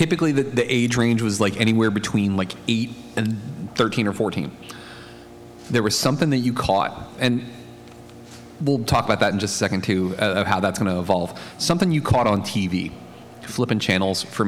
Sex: male